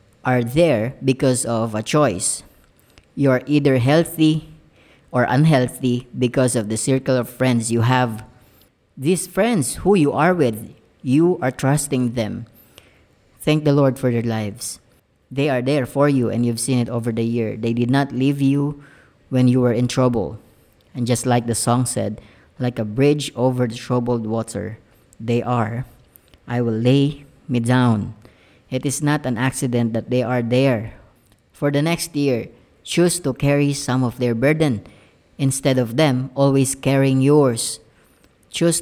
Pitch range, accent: 120-140 Hz, native